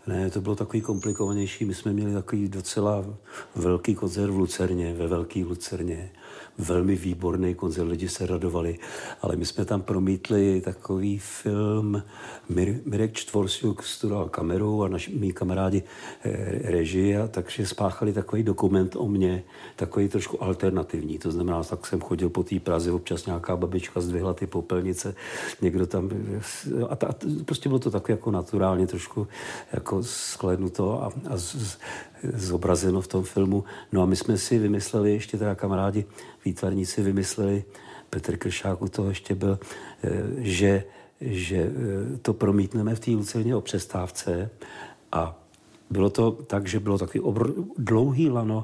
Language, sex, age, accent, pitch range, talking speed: Czech, male, 50-69, native, 90-105 Hz, 150 wpm